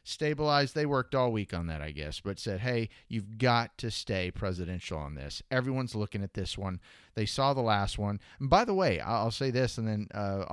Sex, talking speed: male, 220 wpm